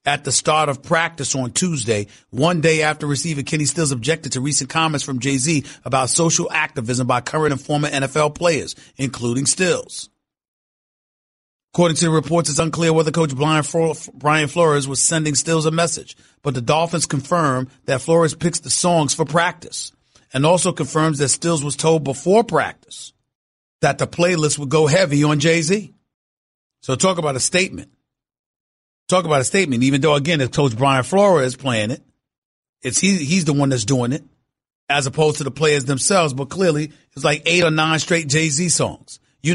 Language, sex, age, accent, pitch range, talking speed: English, male, 40-59, American, 135-165 Hz, 180 wpm